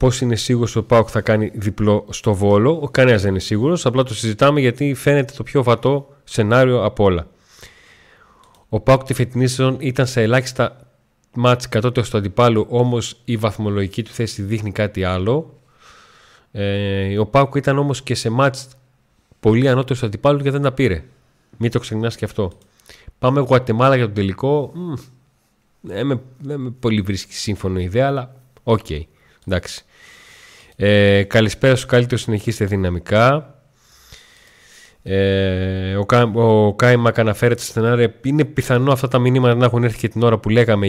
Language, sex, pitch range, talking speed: Greek, male, 105-130 Hz, 165 wpm